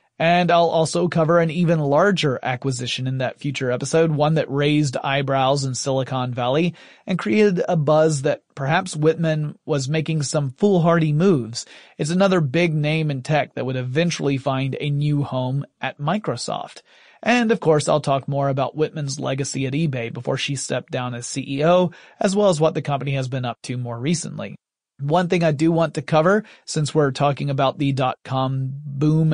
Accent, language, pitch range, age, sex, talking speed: American, English, 135-165 Hz, 30-49, male, 180 wpm